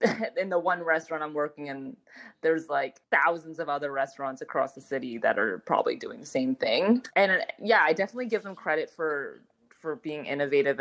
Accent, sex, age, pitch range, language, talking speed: American, female, 20-39, 145-190 Hz, English, 195 wpm